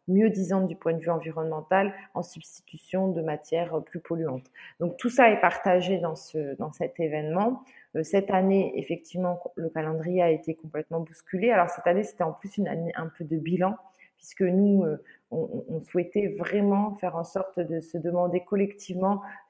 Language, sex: French, female